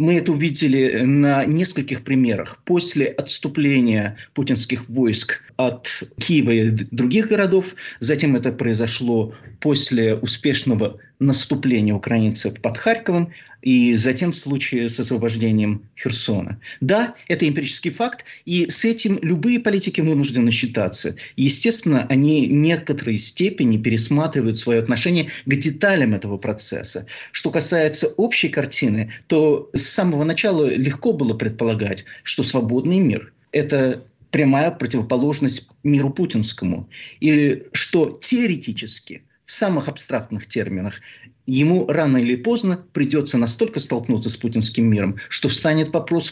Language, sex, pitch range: Russian, male, 120-160 Hz